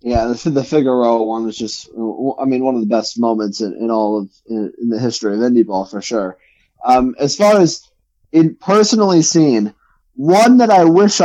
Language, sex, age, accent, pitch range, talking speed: English, male, 20-39, American, 115-150 Hz, 190 wpm